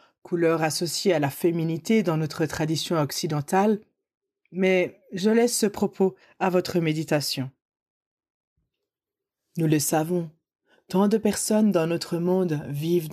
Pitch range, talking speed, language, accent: 165-195 Hz, 125 wpm, French, French